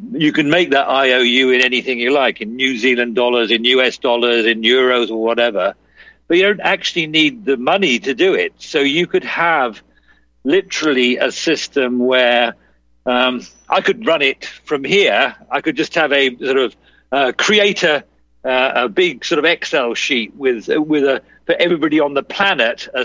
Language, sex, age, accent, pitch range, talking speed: English, male, 50-69, British, 120-165 Hz, 180 wpm